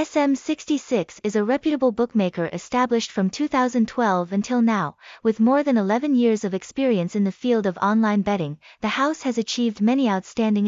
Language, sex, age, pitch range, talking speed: Vietnamese, female, 20-39, 205-255 Hz, 165 wpm